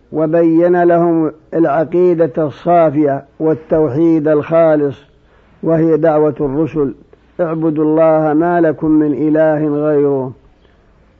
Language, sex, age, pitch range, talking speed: Arabic, male, 50-69, 155-170 Hz, 85 wpm